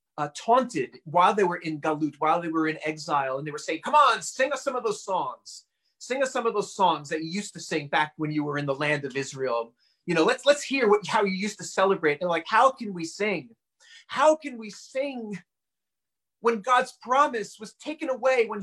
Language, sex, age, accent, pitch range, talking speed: English, male, 30-49, American, 190-255 Hz, 230 wpm